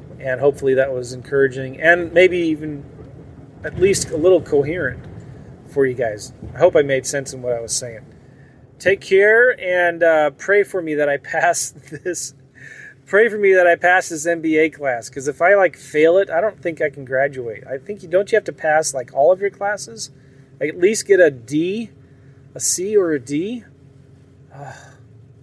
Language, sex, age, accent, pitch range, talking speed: English, male, 30-49, American, 130-155 Hz, 195 wpm